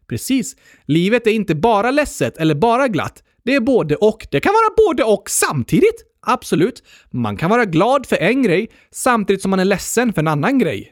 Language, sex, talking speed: Swedish, male, 200 wpm